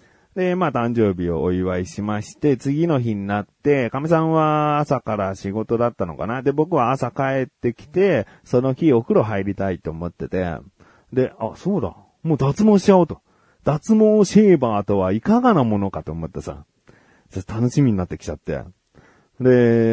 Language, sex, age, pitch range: Japanese, male, 30-49, 95-145 Hz